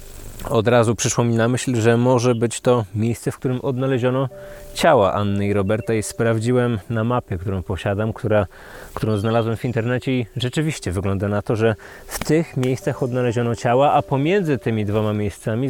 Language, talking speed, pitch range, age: Polish, 170 wpm, 110-145 Hz, 20-39